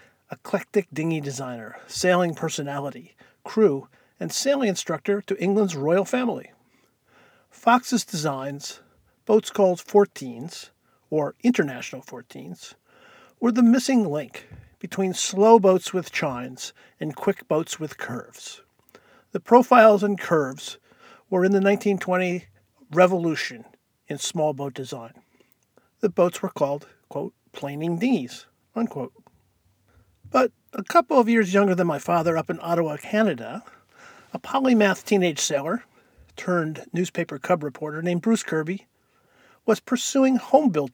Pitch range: 145-210 Hz